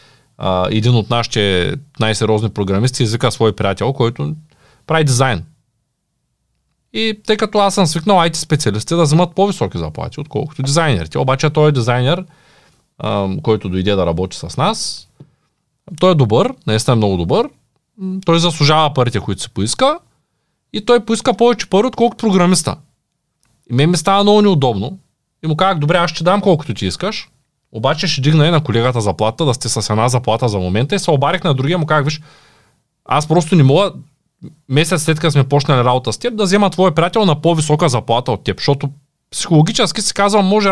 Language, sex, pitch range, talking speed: Bulgarian, male, 120-175 Hz, 175 wpm